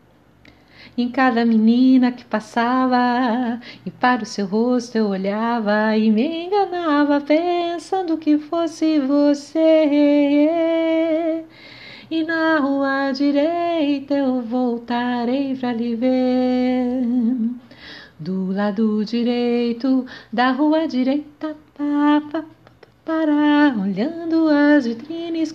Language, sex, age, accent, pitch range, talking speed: Portuguese, female, 30-49, Brazilian, 235-310 Hz, 95 wpm